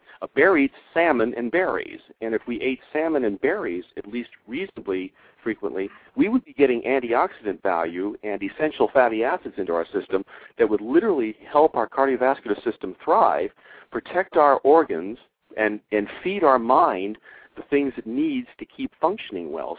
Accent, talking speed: American, 165 wpm